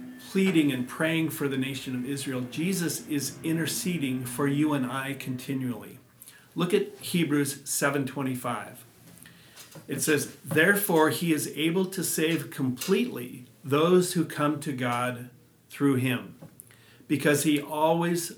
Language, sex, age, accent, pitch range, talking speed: English, male, 50-69, American, 125-155 Hz, 125 wpm